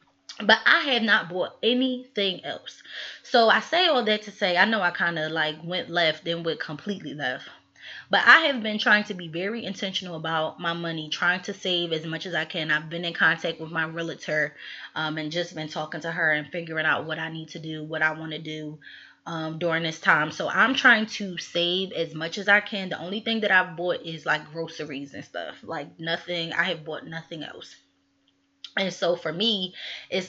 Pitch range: 160-200 Hz